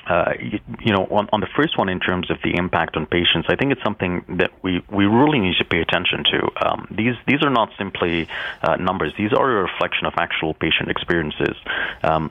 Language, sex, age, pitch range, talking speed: English, male, 30-49, 80-95 Hz, 225 wpm